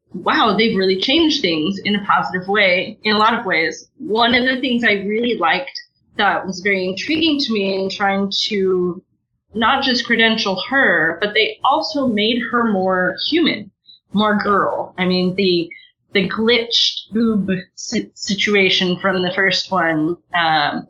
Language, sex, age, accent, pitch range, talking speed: English, female, 30-49, American, 185-230 Hz, 160 wpm